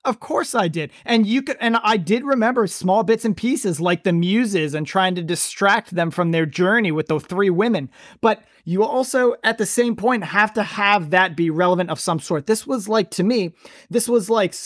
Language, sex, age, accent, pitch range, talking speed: English, male, 30-49, American, 175-225 Hz, 220 wpm